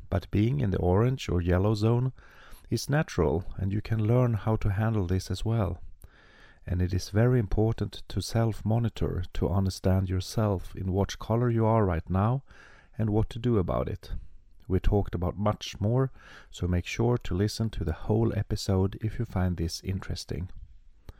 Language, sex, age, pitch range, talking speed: English, male, 40-59, 90-115 Hz, 175 wpm